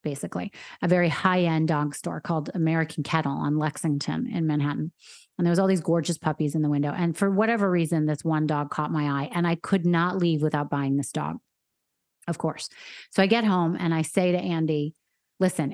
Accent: American